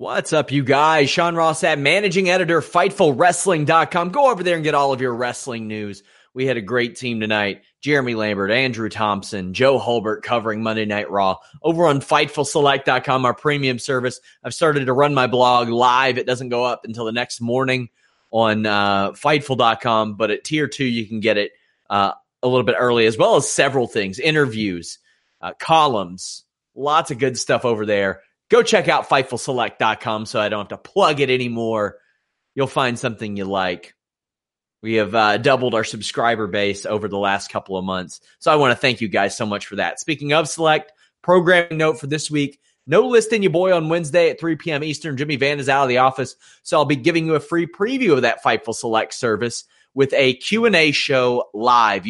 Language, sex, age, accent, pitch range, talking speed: English, male, 30-49, American, 110-150 Hz, 200 wpm